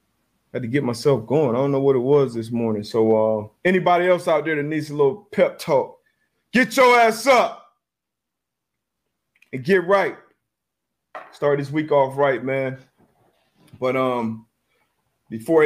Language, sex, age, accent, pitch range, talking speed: English, male, 30-49, American, 125-155 Hz, 155 wpm